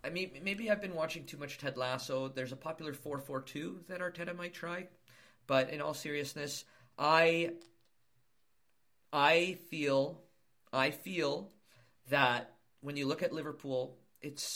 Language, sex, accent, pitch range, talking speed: English, male, American, 115-165 Hz, 140 wpm